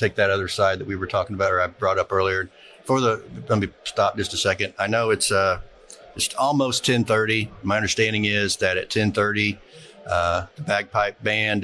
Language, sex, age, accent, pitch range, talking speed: English, male, 50-69, American, 95-105 Hz, 210 wpm